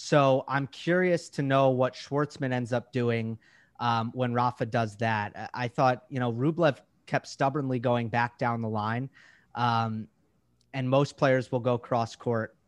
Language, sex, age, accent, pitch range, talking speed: English, male, 30-49, American, 115-150 Hz, 165 wpm